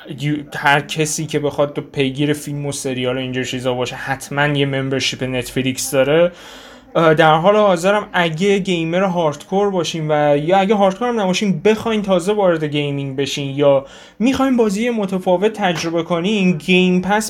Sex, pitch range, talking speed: male, 145-195 Hz, 155 wpm